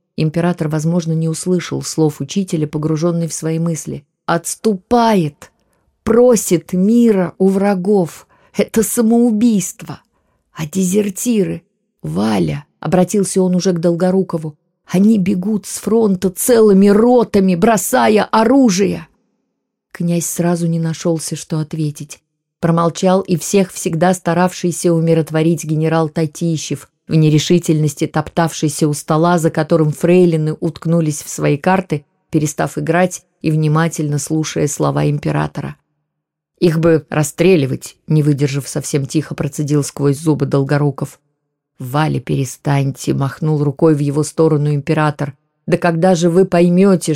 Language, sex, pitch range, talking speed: Russian, female, 155-190 Hz, 115 wpm